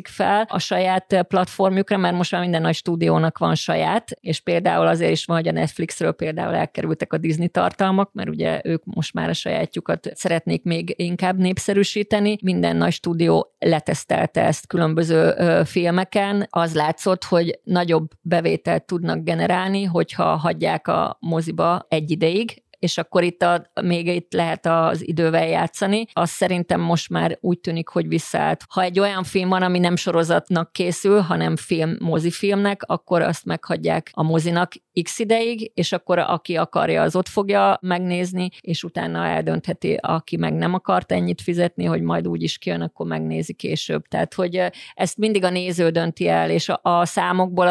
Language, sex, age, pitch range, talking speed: Hungarian, female, 30-49, 165-185 Hz, 165 wpm